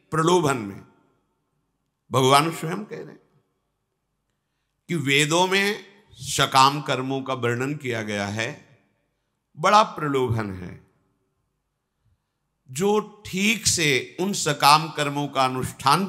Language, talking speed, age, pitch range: English, 100 wpm, 50-69, 115-155 Hz